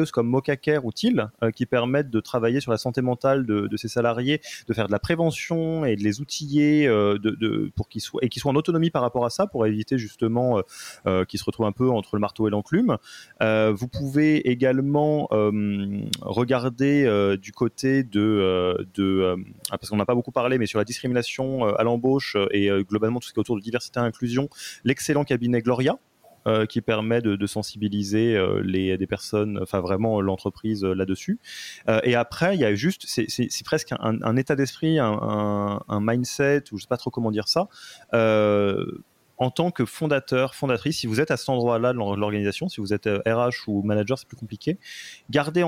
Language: French